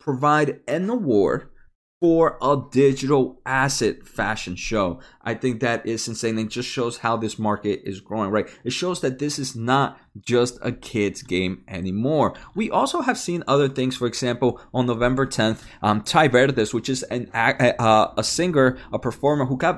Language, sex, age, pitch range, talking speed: English, male, 20-39, 110-145 Hz, 175 wpm